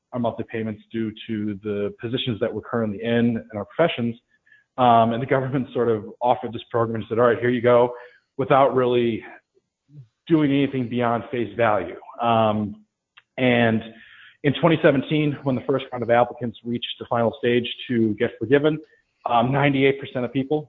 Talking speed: 170 wpm